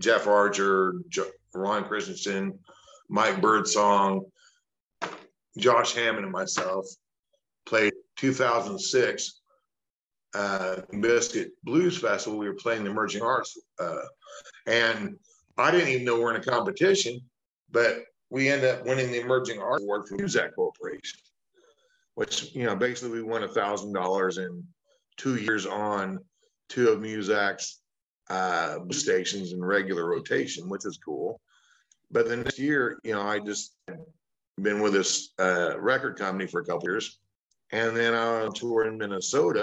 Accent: American